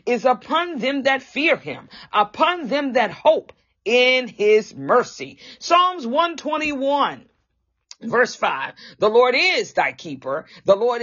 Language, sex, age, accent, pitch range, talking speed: English, female, 40-59, American, 210-285 Hz, 130 wpm